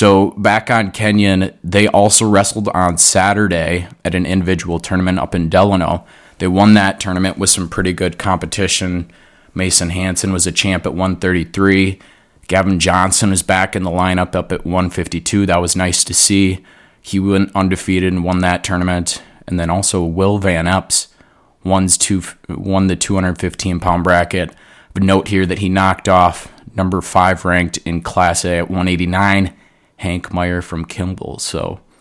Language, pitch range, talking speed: English, 90-95 Hz, 155 wpm